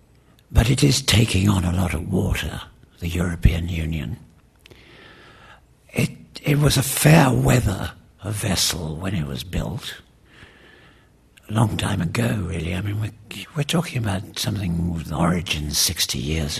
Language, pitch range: English, 85-110 Hz